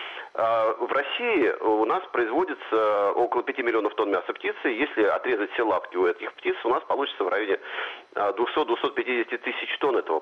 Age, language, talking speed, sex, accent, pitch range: 40-59, Russian, 160 wpm, male, native, 360-445 Hz